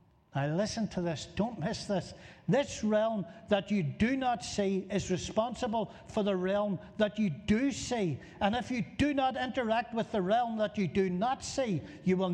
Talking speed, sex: 190 wpm, male